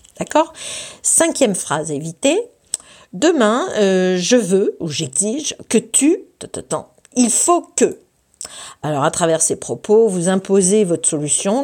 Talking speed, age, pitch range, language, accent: 130 wpm, 50-69, 160-205 Hz, French, French